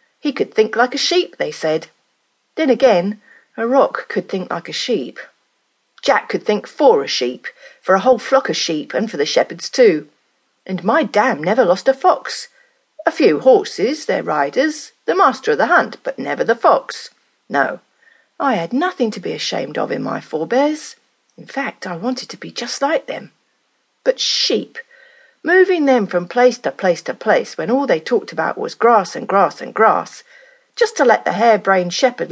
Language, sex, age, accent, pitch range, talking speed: English, female, 40-59, British, 225-310 Hz, 190 wpm